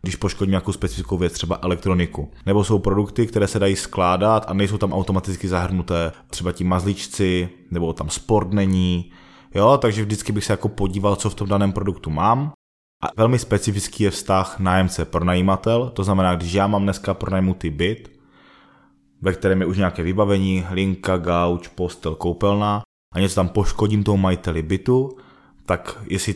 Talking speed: 165 wpm